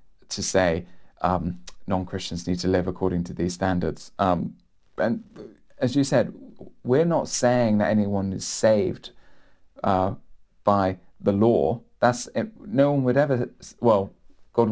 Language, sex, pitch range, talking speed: English, male, 105-125 Hz, 145 wpm